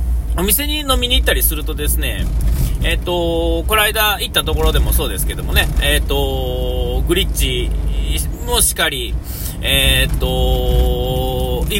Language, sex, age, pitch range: Japanese, male, 40-59, 65-75 Hz